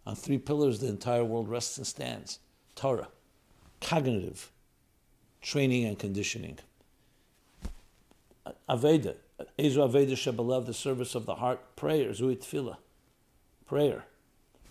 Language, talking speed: English, 105 wpm